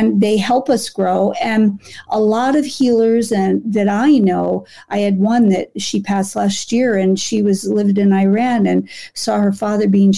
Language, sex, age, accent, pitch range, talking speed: English, female, 50-69, American, 195-245 Hz, 195 wpm